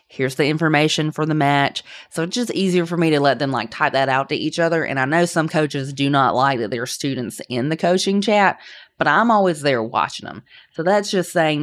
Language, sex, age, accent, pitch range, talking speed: English, female, 20-39, American, 140-170 Hz, 245 wpm